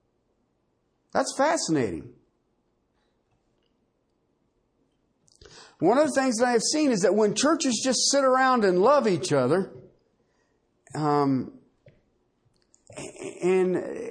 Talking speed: 100 wpm